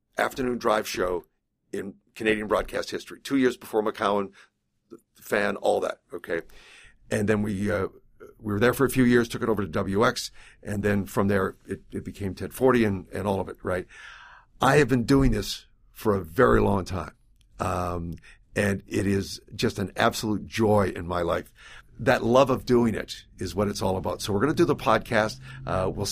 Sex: male